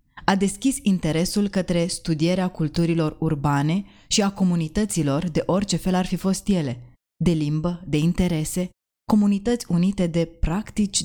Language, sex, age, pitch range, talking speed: Romanian, female, 20-39, 150-185 Hz, 135 wpm